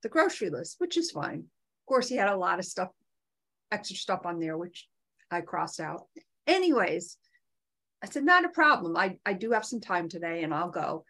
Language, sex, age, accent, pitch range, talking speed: English, female, 50-69, American, 195-275 Hz, 205 wpm